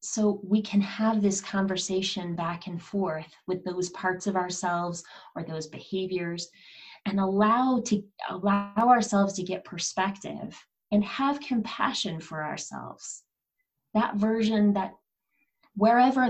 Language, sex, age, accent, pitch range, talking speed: English, female, 30-49, American, 175-215 Hz, 125 wpm